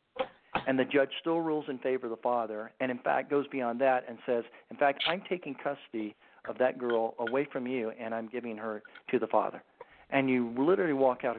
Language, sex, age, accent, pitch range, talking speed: English, male, 50-69, American, 115-135 Hz, 215 wpm